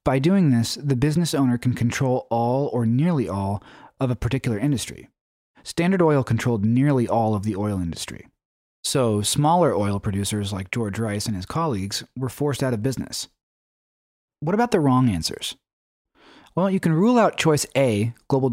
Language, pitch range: English, 105-145 Hz